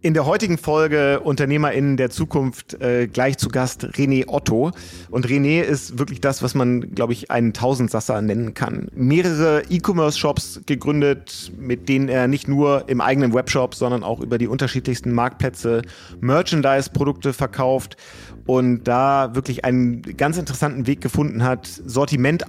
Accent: German